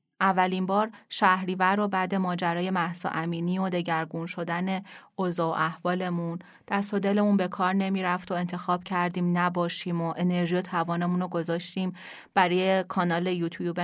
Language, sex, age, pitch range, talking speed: Persian, female, 30-49, 180-220 Hz, 145 wpm